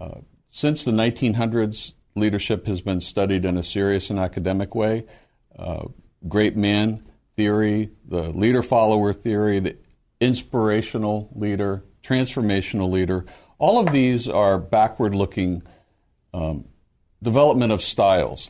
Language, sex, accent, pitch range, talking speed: English, male, American, 95-125 Hz, 120 wpm